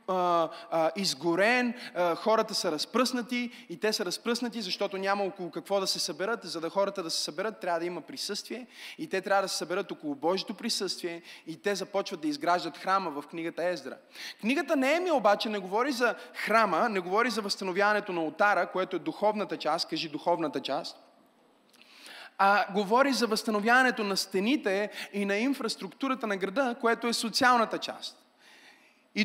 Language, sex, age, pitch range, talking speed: Bulgarian, male, 20-39, 185-235 Hz, 165 wpm